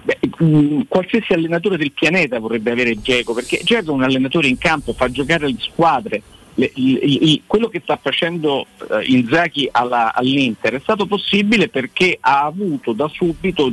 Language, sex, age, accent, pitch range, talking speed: Italian, male, 50-69, native, 130-210 Hz, 170 wpm